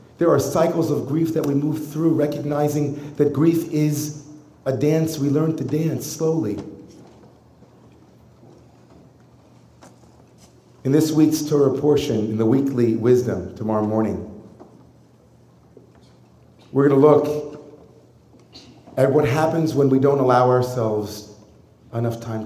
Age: 40-59